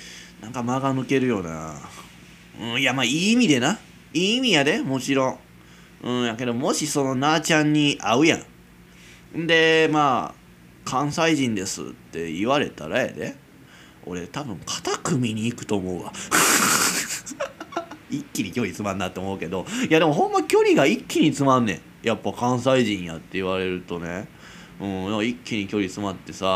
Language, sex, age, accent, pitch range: Japanese, male, 20-39, native, 95-150 Hz